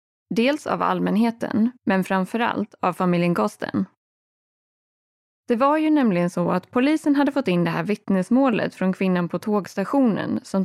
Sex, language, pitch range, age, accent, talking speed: female, Swedish, 175-230 Hz, 20-39, native, 145 wpm